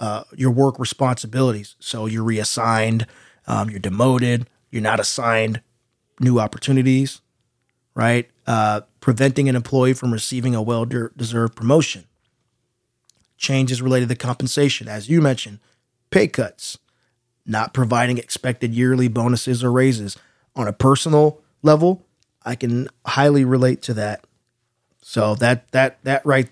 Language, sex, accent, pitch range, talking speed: English, male, American, 115-135 Hz, 125 wpm